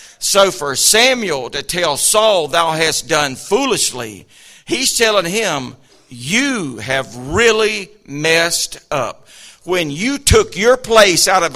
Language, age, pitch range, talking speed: English, 50-69, 170-210 Hz, 130 wpm